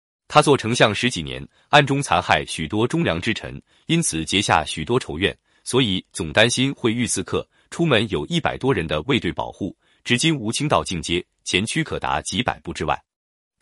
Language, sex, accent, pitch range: Chinese, male, native, 85-145 Hz